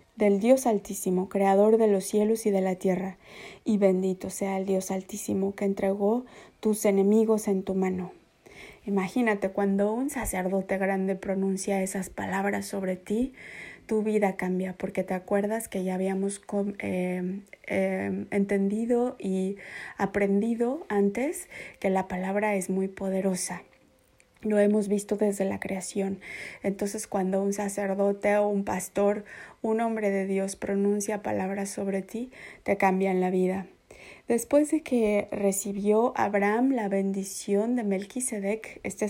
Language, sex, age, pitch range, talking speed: Spanish, female, 20-39, 195-215 Hz, 140 wpm